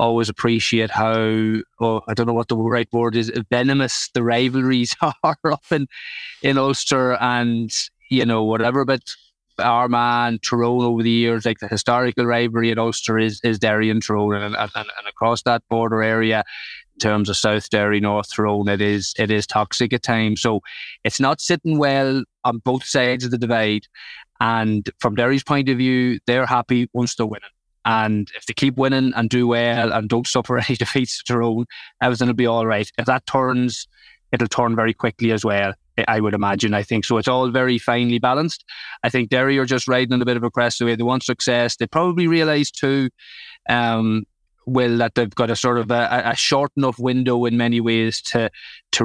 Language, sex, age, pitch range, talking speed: English, male, 20-39, 115-125 Hz, 200 wpm